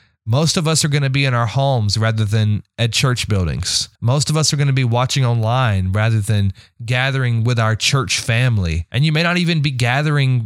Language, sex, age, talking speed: English, male, 30-49, 220 wpm